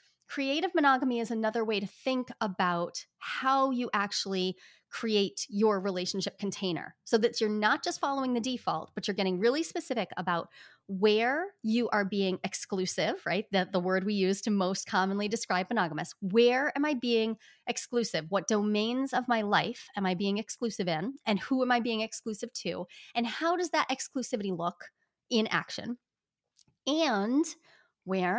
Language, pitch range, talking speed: English, 195-255 Hz, 165 wpm